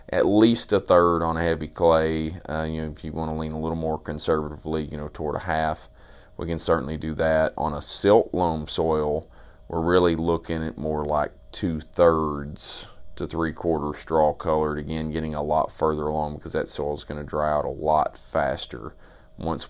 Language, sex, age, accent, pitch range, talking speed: English, male, 30-49, American, 75-85 Hz, 195 wpm